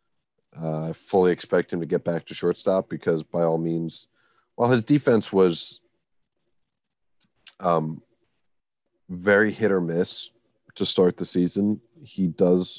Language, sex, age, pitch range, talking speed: English, male, 30-49, 85-90 Hz, 135 wpm